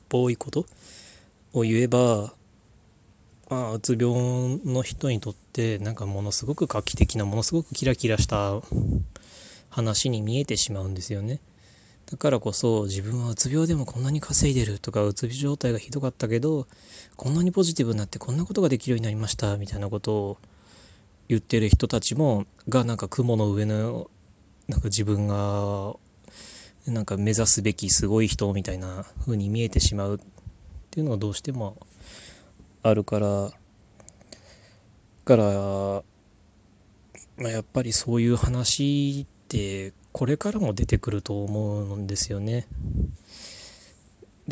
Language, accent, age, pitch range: Japanese, native, 20-39, 100-125 Hz